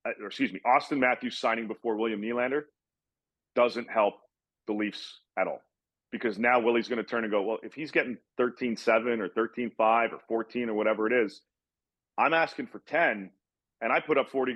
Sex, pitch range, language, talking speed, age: male, 110-125 Hz, English, 185 wpm, 40-59